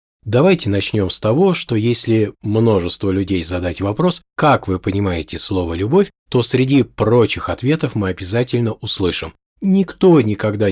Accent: native